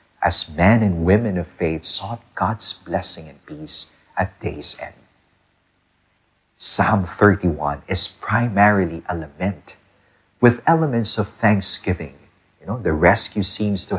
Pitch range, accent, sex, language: 90-110 Hz, Filipino, male, English